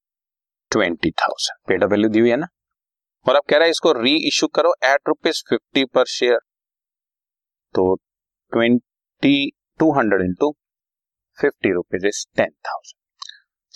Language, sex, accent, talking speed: Hindi, male, native, 90 wpm